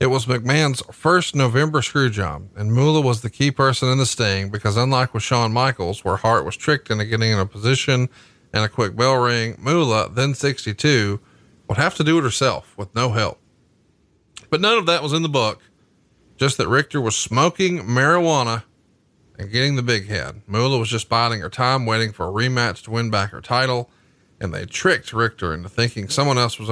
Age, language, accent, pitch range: 40-59, English, American, 105-135 Hz